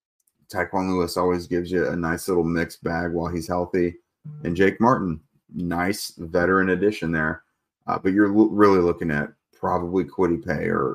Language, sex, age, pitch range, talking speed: English, male, 30-49, 85-95 Hz, 165 wpm